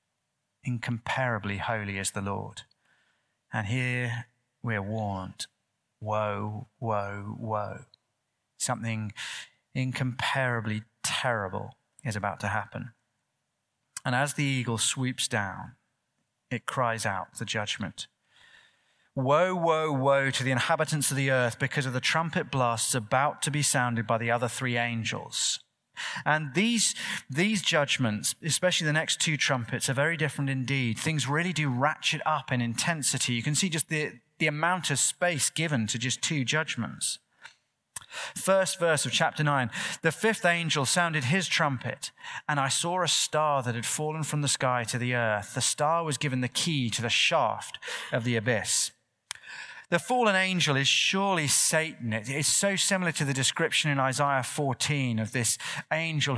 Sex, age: male, 30-49